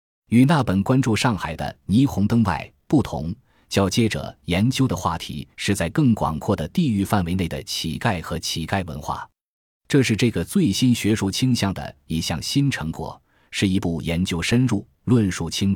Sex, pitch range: male, 85-110 Hz